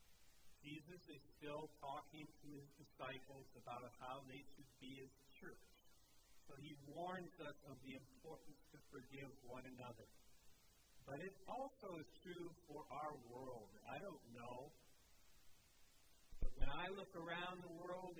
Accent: American